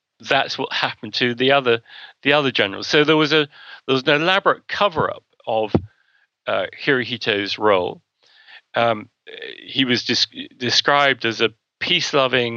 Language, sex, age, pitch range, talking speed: English, male, 40-59, 115-155 Hz, 145 wpm